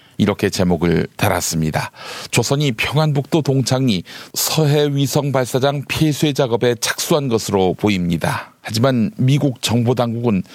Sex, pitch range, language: male, 115-150 Hz, Korean